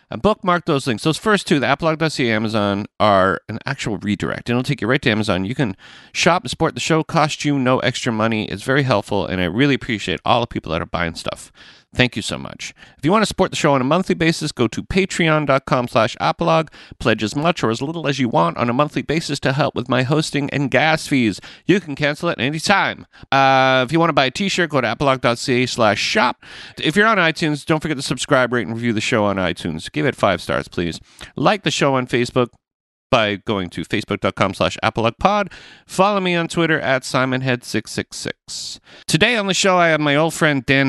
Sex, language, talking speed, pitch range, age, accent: male, English, 220 wpm, 110-155 Hz, 40-59, American